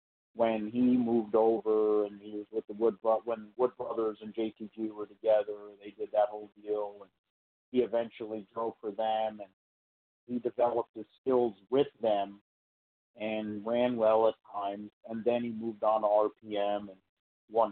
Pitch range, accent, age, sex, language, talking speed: 105-115 Hz, American, 40-59, male, English, 165 wpm